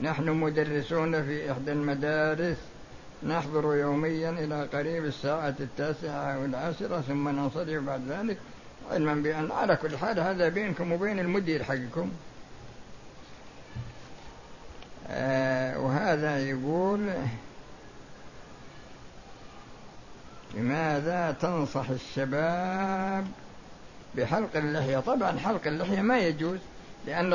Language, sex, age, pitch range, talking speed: Arabic, male, 60-79, 155-205 Hz, 85 wpm